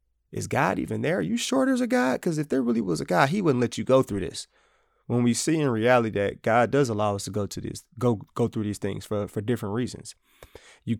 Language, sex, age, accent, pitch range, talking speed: English, male, 20-39, American, 105-130 Hz, 260 wpm